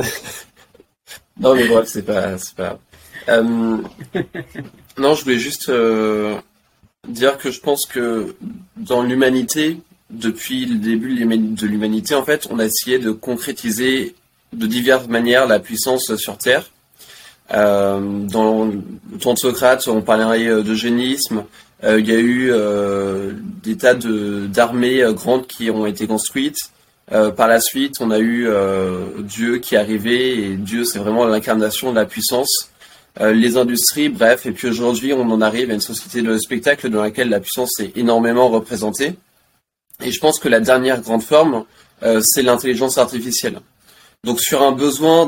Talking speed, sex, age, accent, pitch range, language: 160 wpm, male, 20-39, French, 110-130 Hz, French